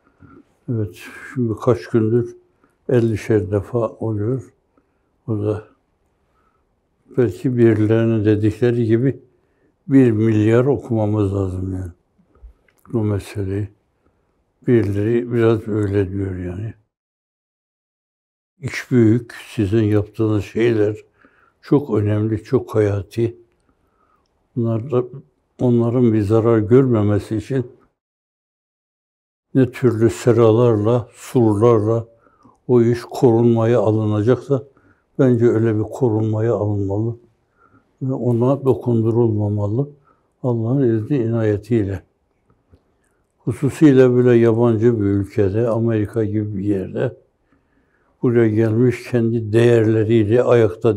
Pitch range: 105-120 Hz